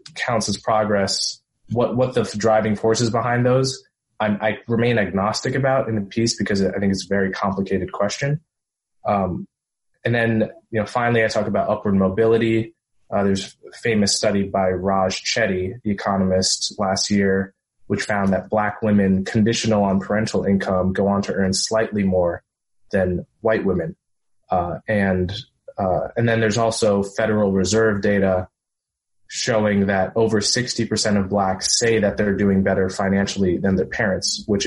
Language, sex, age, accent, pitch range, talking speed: English, male, 20-39, American, 95-115 Hz, 160 wpm